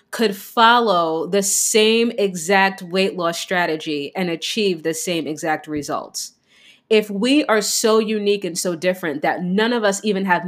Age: 30-49